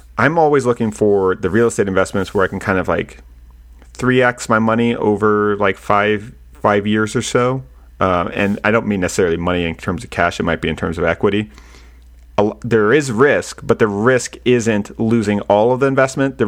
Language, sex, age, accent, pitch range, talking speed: English, male, 40-59, American, 80-110 Hz, 205 wpm